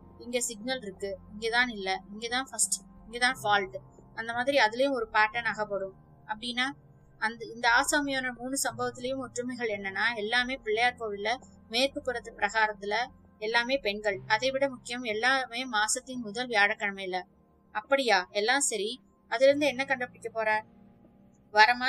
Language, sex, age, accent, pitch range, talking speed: Tamil, female, 20-39, native, 210-255 Hz, 90 wpm